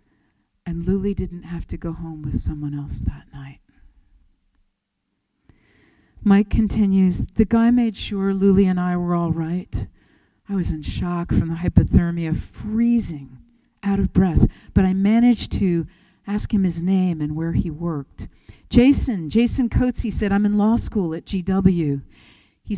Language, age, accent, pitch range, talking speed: English, 50-69, American, 135-195 Hz, 155 wpm